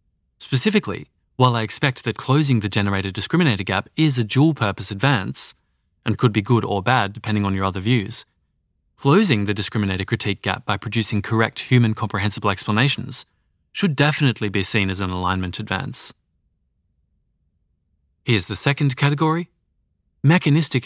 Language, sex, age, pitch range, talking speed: English, male, 20-39, 100-130 Hz, 130 wpm